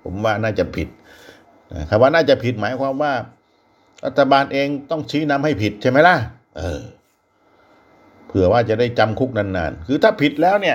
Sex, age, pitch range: male, 60-79, 110-150 Hz